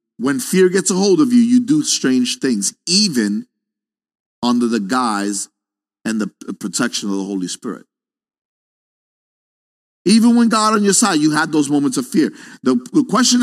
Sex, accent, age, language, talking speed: male, American, 50-69, English, 165 wpm